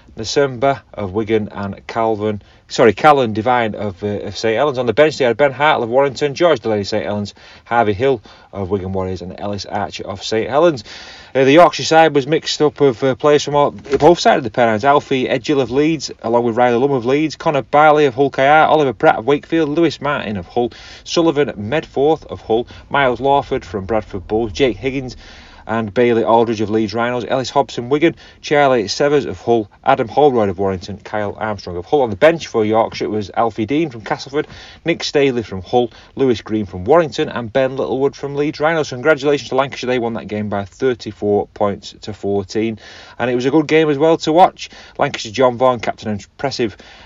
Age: 30-49